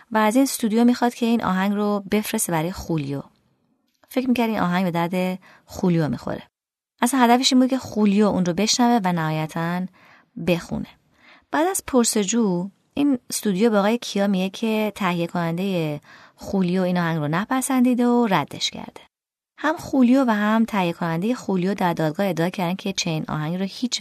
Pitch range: 170-235 Hz